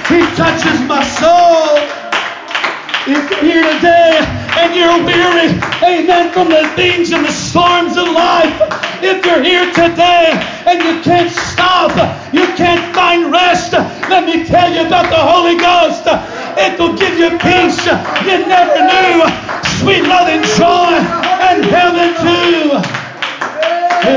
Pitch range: 265-335 Hz